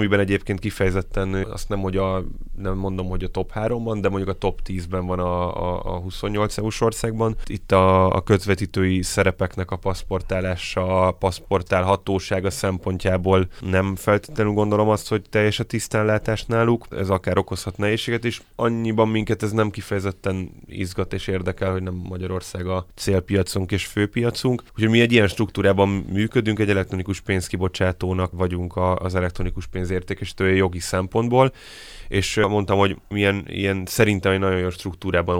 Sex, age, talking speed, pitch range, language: male, 10-29, 155 wpm, 90-105 Hz, Hungarian